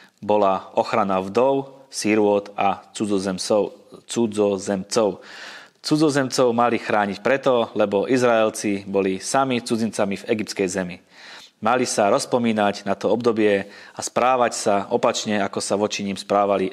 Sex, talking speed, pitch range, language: male, 120 wpm, 100-120 Hz, Slovak